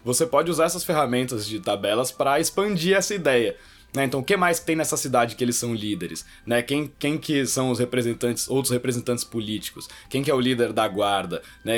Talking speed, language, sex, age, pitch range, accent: 215 wpm, Portuguese, male, 20-39, 115-150 Hz, Brazilian